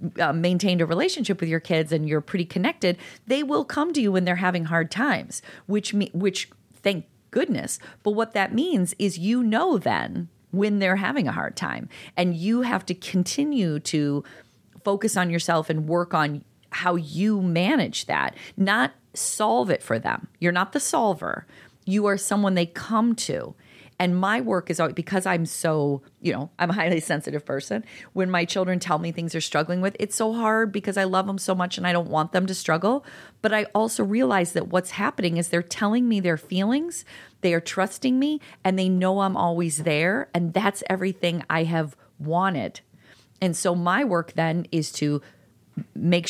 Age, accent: 40-59, American